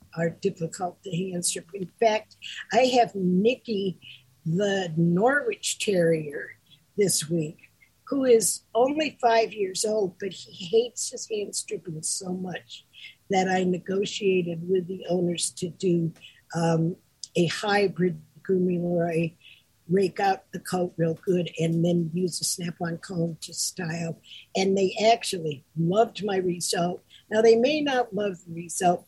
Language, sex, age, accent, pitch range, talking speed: English, female, 50-69, American, 170-210 Hz, 145 wpm